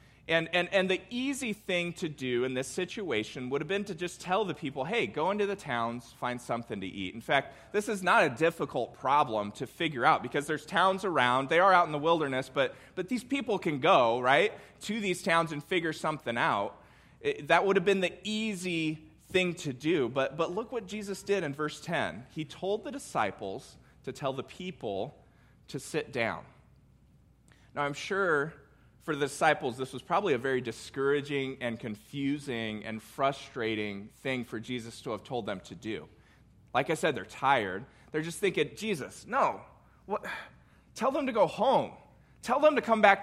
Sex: male